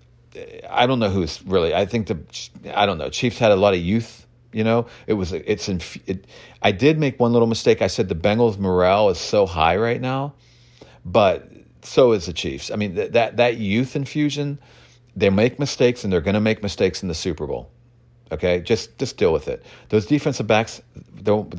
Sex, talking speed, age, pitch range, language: male, 205 wpm, 40-59, 100-130 Hz, English